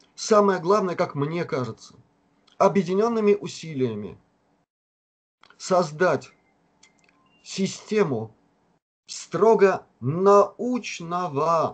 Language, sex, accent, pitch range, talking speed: Russian, male, native, 135-200 Hz, 55 wpm